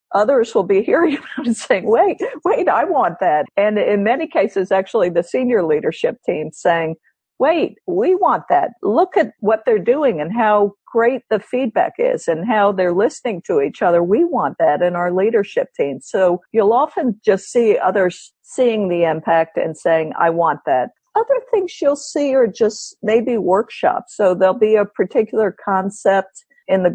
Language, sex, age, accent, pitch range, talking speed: English, female, 50-69, American, 175-245 Hz, 185 wpm